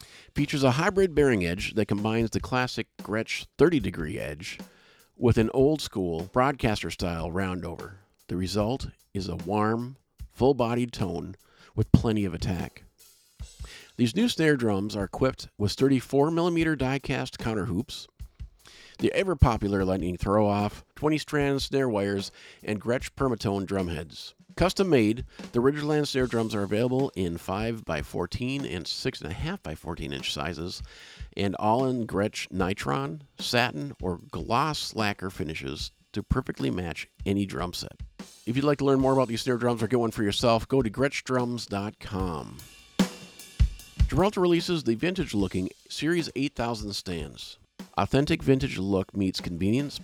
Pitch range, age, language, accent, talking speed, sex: 95-135 Hz, 50-69, English, American, 135 wpm, male